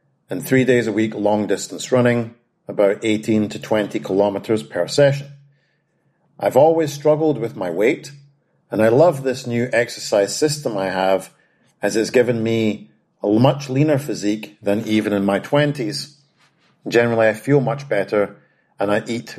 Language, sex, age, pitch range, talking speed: English, male, 40-59, 105-140 Hz, 160 wpm